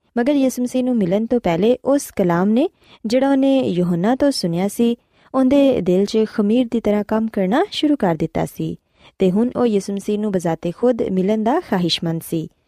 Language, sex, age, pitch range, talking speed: Punjabi, female, 20-39, 185-250 Hz, 175 wpm